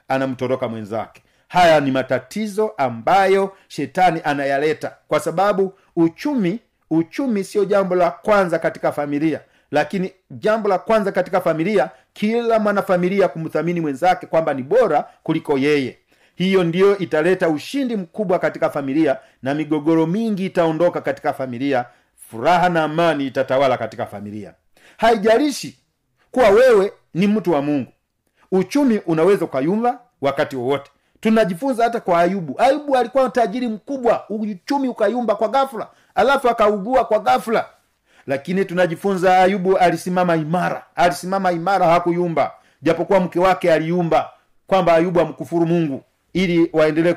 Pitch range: 155-200 Hz